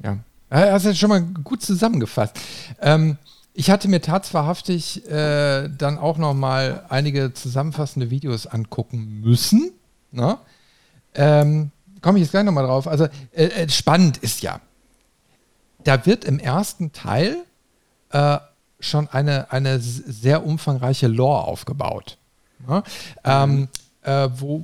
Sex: male